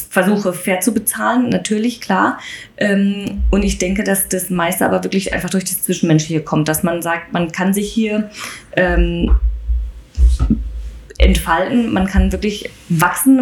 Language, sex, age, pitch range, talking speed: German, female, 20-39, 165-200 Hz, 145 wpm